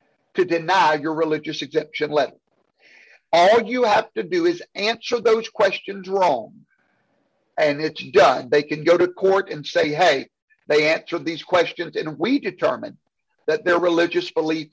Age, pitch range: 50-69, 160-225 Hz